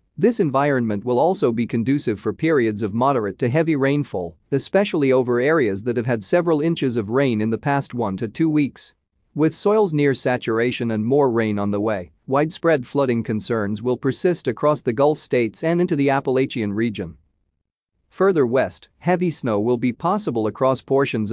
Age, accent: 40-59, American